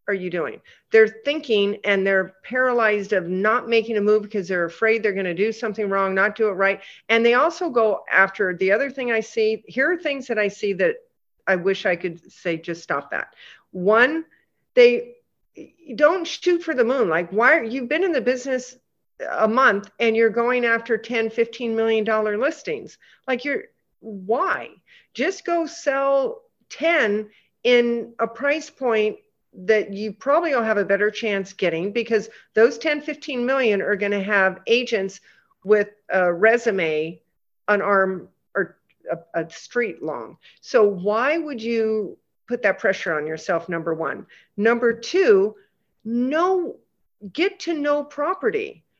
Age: 50-69